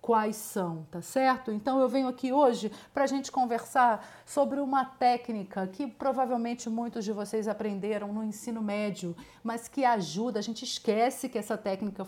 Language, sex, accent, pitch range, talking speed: Portuguese, female, Brazilian, 210-265 Hz, 170 wpm